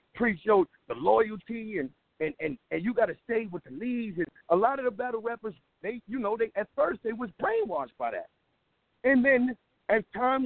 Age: 50-69